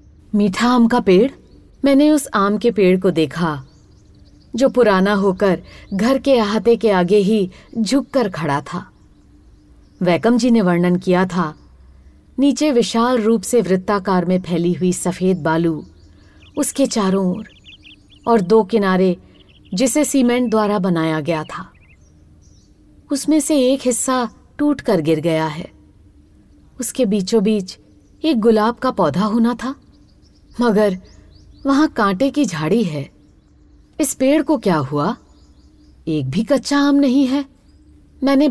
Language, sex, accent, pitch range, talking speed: Hindi, female, native, 155-250 Hz, 135 wpm